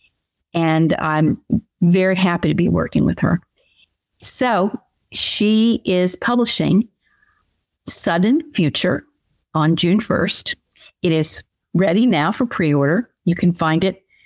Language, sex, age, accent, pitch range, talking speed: English, female, 50-69, American, 160-235 Hz, 120 wpm